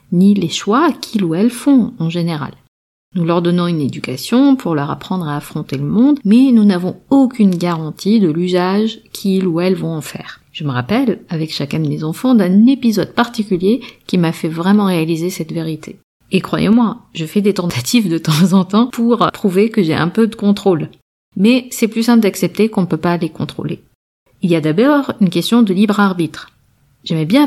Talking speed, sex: 200 wpm, female